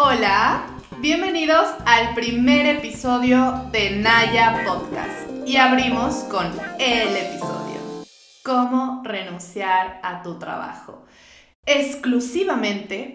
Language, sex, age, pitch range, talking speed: Spanish, female, 20-39, 205-260 Hz, 85 wpm